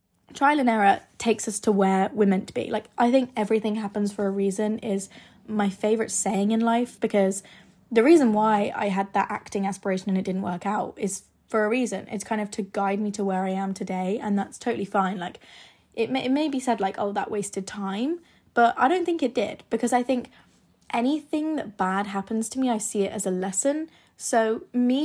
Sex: female